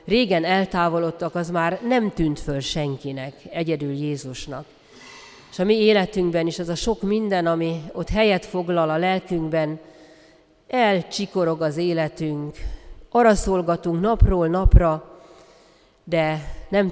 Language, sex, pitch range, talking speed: Hungarian, female, 155-195 Hz, 120 wpm